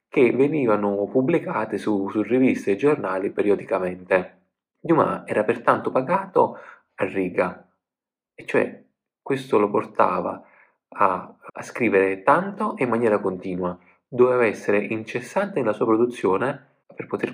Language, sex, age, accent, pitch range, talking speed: Italian, male, 30-49, native, 100-125 Hz, 125 wpm